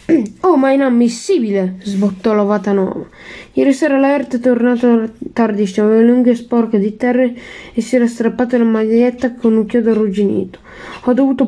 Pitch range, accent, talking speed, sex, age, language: 215-250 Hz, native, 160 wpm, female, 10-29, Italian